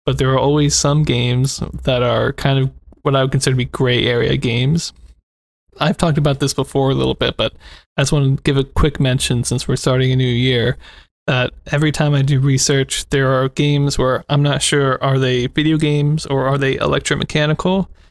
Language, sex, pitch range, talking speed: English, male, 125-140 Hz, 210 wpm